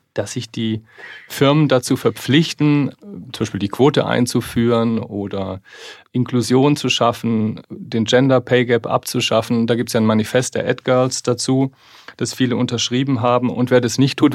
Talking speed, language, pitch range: 150 wpm, German, 115-130 Hz